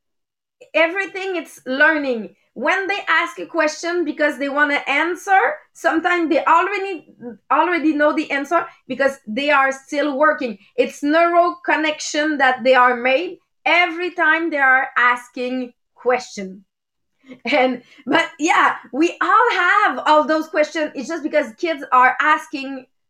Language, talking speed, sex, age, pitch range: English, 140 wpm, female, 30-49, 255-325 Hz